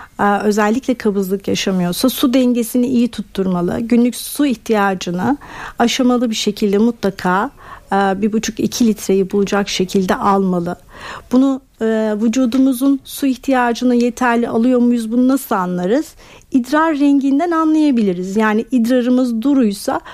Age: 60-79